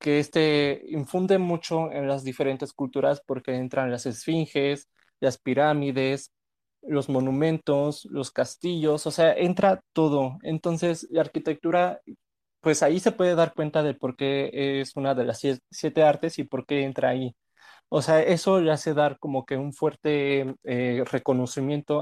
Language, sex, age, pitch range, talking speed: English, male, 20-39, 130-155 Hz, 155 wpm